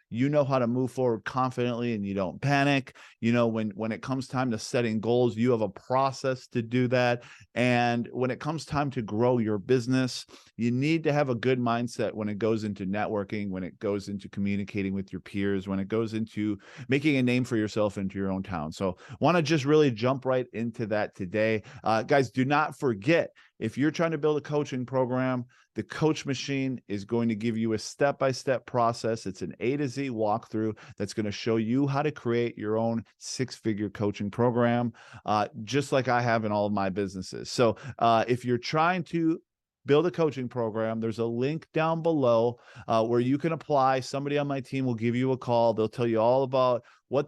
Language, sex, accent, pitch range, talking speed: English, male, American, 110-135 Hz, 215 wpm